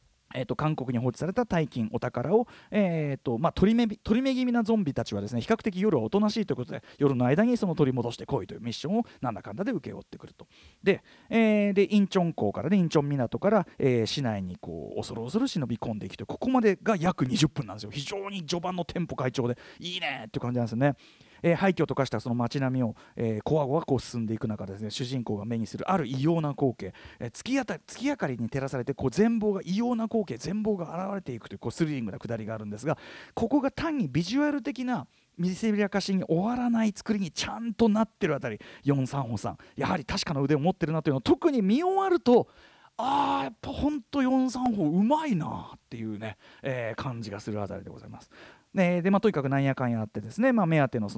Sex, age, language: male, 40-59, Japanese